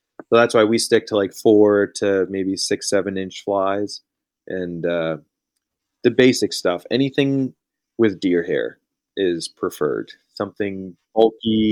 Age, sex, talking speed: 30-49, male, 140 wpm